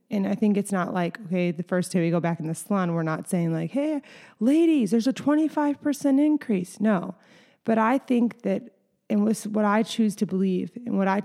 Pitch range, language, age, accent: 185-210 Hz, English, 20-39, American